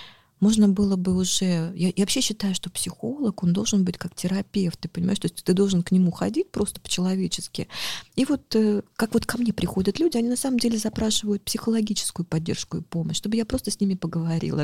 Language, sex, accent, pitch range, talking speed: Russian, female, native, 165-205 Hz, 195 wpm